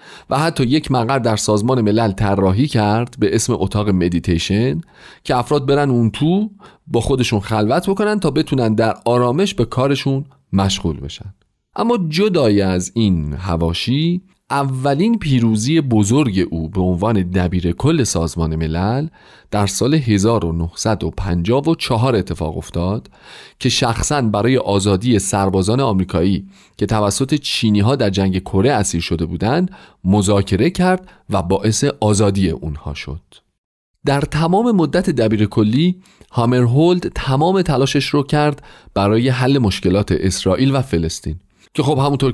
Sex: male